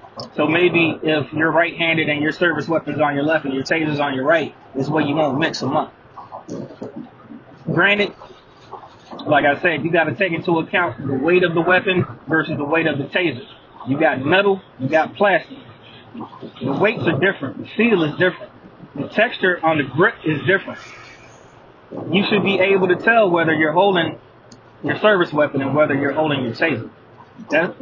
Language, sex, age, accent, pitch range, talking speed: English, male, 20-39, American, 135-180 Hz, 190 wpm